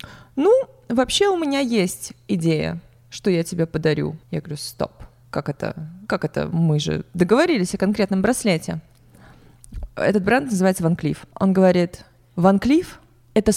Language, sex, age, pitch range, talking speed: Russian, female, 20-39, 165-210 Hz, 135 wpm